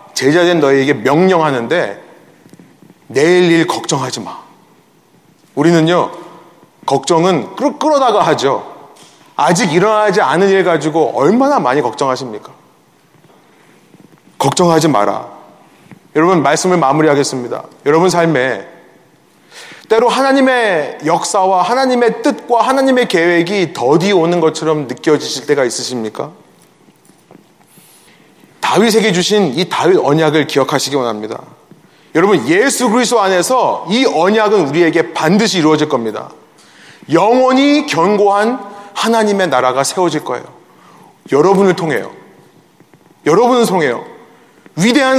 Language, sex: Korean, male